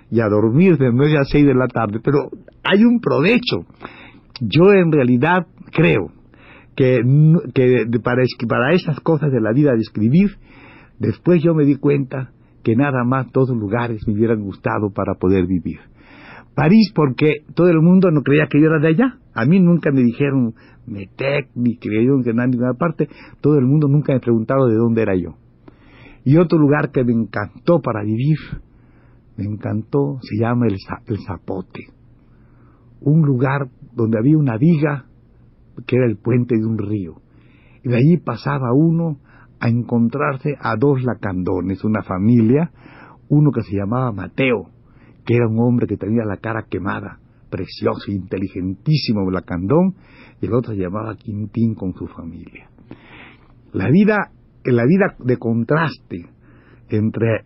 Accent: Mexican